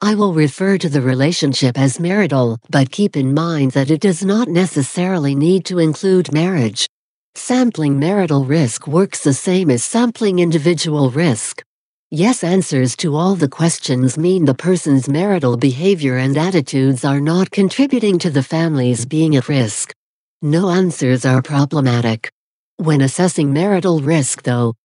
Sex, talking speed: female, 150 wpm